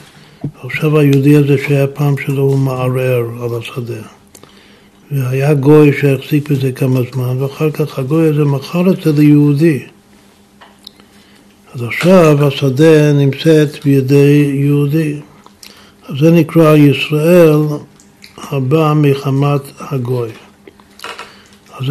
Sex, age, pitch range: male, 60-79, 130-155 Hz